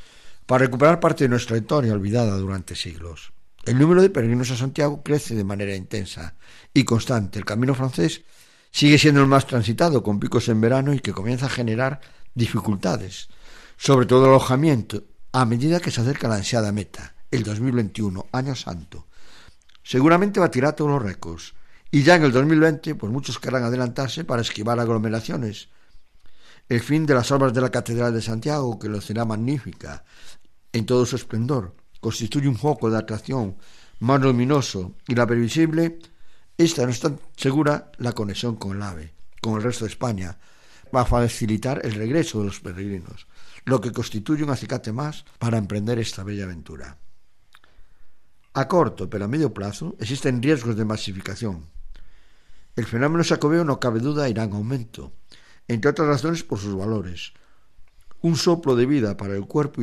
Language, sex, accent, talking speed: Spanish, male, Spanish, 170 wpm